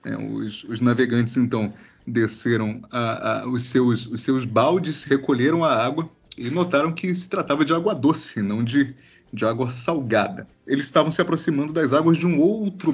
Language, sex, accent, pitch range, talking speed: Portuguese, male, Brazilian, 115-140 Hz, 175 wpm